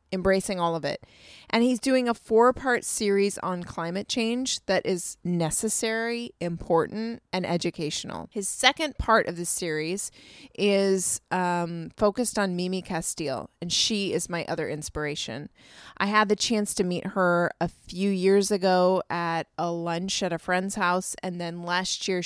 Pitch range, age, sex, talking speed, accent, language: 170-205 Hz, 30-49, female, 160 wpm, American, English